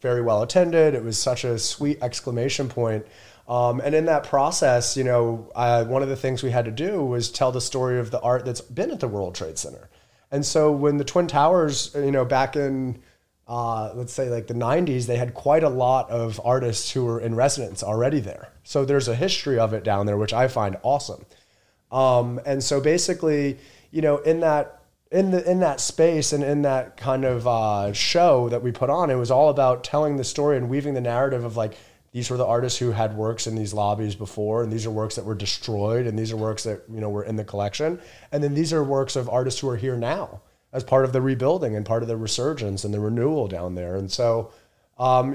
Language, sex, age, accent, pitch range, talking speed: English, male, 30-49, American, 115-140 Hz, 230 wpm